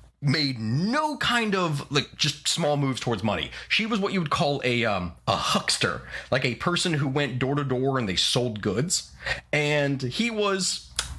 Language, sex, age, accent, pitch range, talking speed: English, male, 30-49, American, 110-150 Hz, 190 wpm